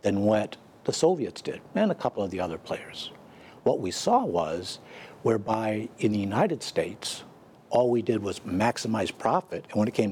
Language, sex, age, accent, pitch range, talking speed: English, male, 60-79, American, 105-125 Hz, 185 wpm